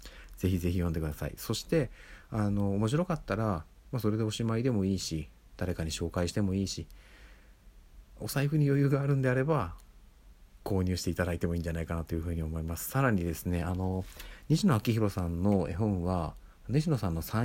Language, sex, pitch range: Japanese, male, 85-115 Hz